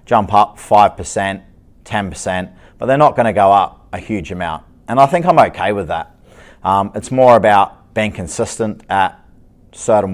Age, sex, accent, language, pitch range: 30-49, male, Australian, Japanese, 95-115 Hz